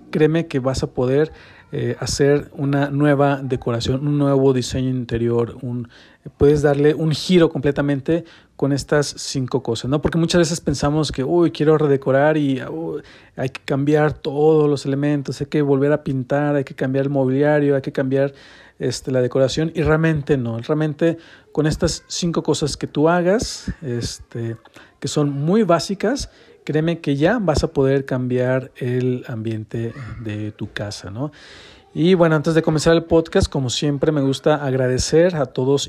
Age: 40-59